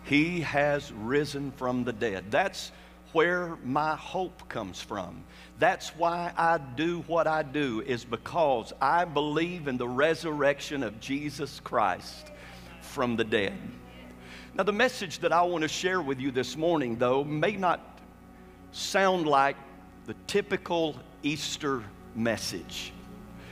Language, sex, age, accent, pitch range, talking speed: English, male, 50-69, American, 115-170 Hz, 135 wpm